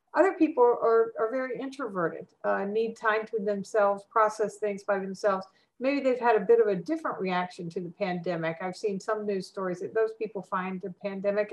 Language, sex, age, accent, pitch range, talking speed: English, female, 50-69, American, 190-230 Hz, 200 wpm